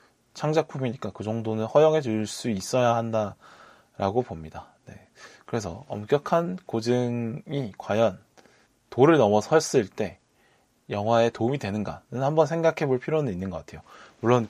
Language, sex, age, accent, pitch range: Korean, male, 20-39, native, 110-150 Hz